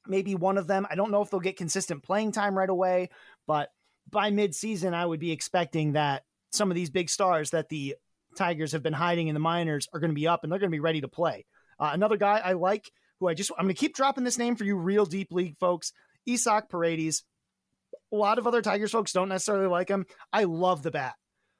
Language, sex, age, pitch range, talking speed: English, male, 30-49, 165-205 Hz, 240 wpm